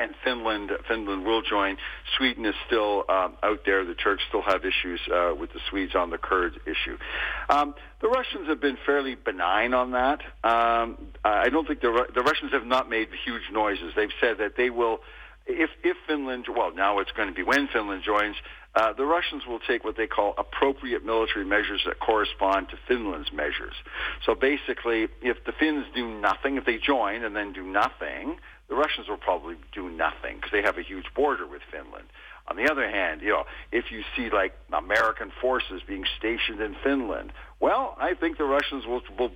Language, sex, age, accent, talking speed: English, male, 60-79, American, 195 wpm